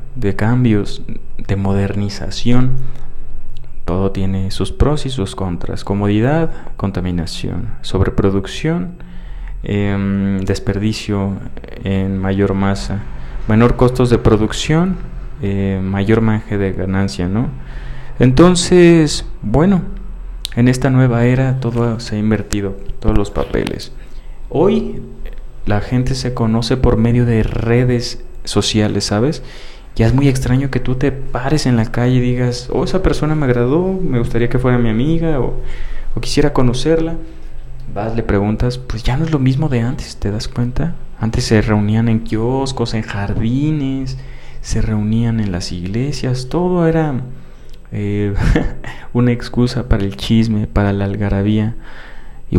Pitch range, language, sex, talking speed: 100-130 Hz, Spanish, male, 135 wpm